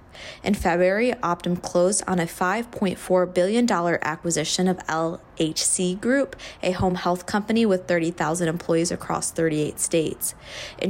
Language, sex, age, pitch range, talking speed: English, female, 20-39, 170-200 Hz, 125 wpm